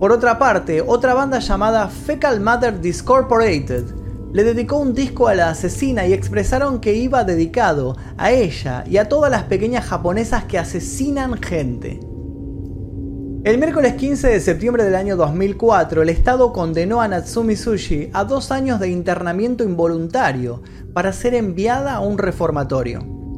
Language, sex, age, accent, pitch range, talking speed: Spanish, male, 30-49, Argentinian, 150-240 Hz, 150 wpm